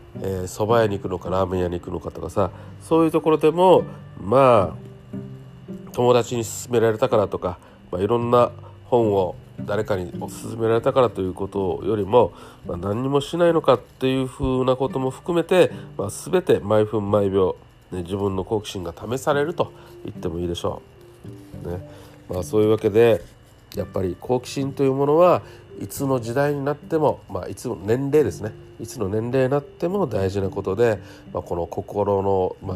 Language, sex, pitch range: Japanese, male, 95-130 Hz